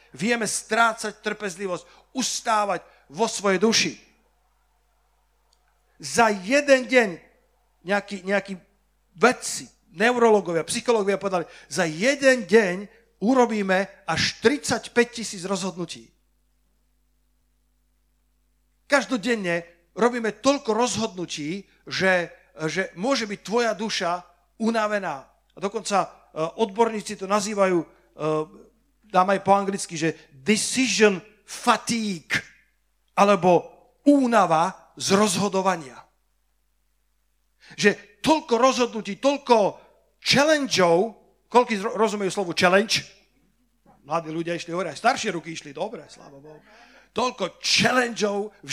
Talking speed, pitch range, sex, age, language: 90 wpm, 175-230 Hz, male, 50-69, Slovak